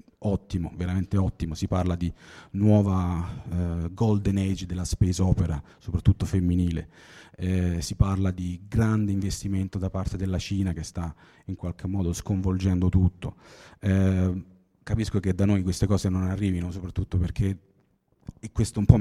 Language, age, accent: Italian, 30-49, native